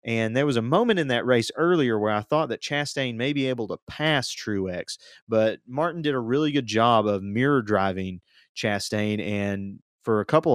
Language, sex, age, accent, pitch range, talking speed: English, male, 30-49, American, 100-125 Hz, 200 wpm